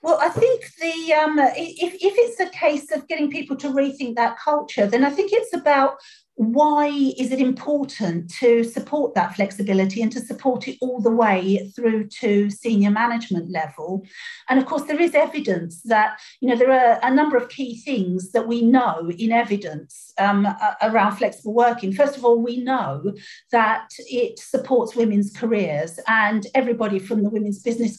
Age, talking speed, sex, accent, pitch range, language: 50-69, 180 wpm, female, British, 210-285 Hz, English